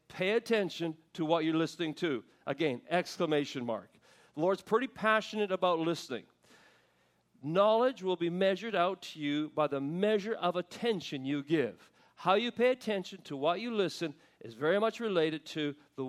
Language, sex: English, male